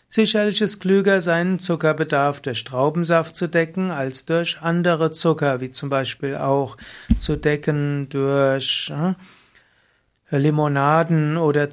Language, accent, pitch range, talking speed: German, German, 145-175 Hz, 120 wpm